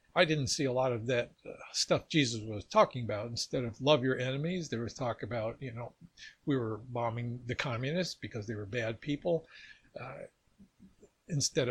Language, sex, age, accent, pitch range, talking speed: English, male, 60-79, American, 125-165 Hz, 185 wpm